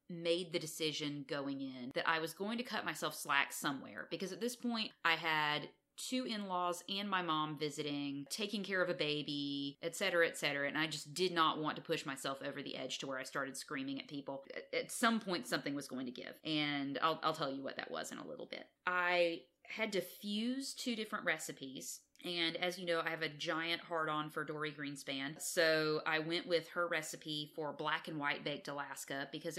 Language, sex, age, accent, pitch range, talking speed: English, female, 30-49, American, 150-190 Hz, 215 wpm